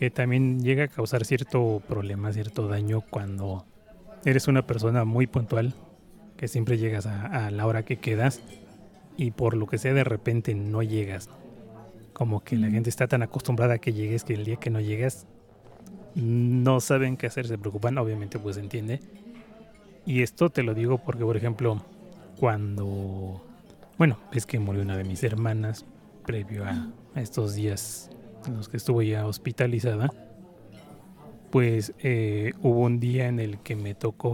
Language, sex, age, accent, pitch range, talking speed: Spanish, male, 30-49, Mexican, 105-130 Hz, 165 wpm